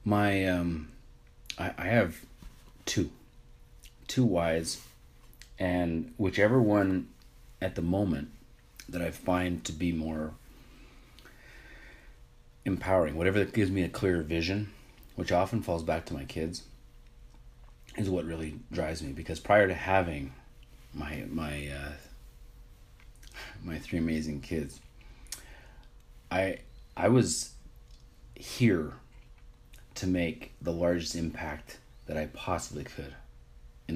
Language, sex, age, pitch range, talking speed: English, male, 30-49, 80-95 Hz, 115 wpm